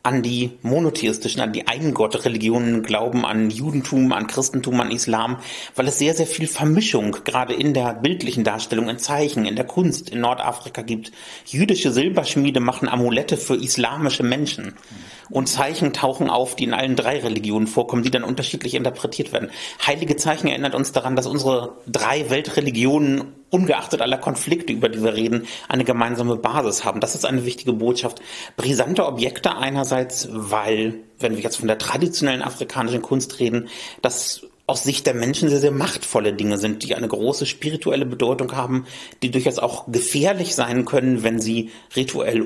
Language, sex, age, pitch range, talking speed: German, male, 30-49, 115-140 Hz, 165 wpm